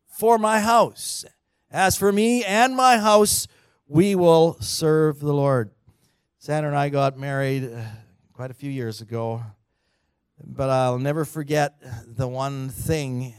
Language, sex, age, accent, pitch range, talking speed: English, male, 50-69, American, 115-135 Hz, 145 wpm